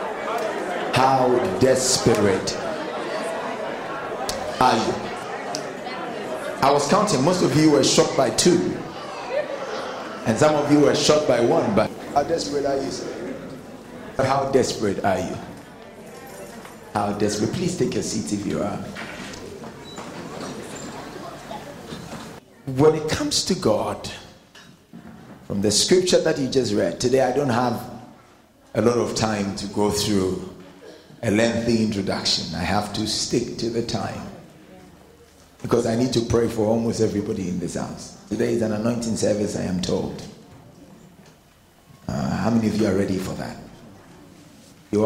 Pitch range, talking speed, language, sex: 105-135 Hz, 135 wpm, English, male